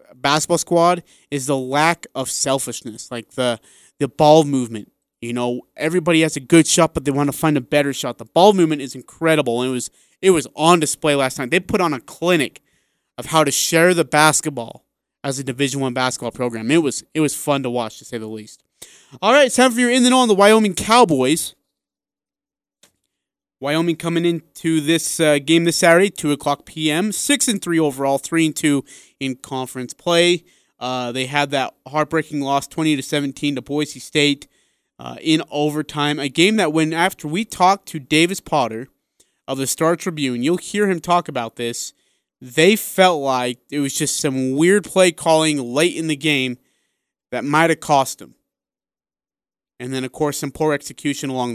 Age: 30-49